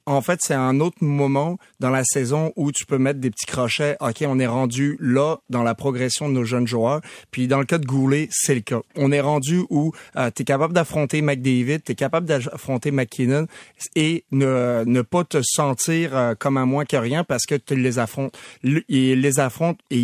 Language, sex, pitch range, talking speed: French, male, 130-155 Hz, 225 wpm